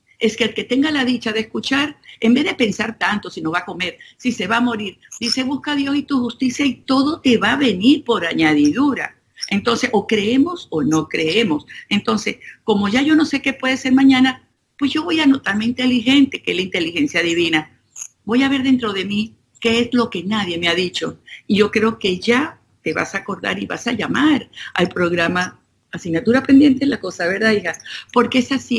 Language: Spanish